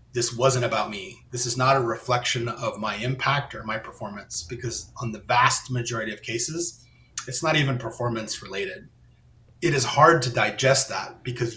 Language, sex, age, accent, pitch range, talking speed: English, male, 30-49, American, 115-130 Hz, 175 wpm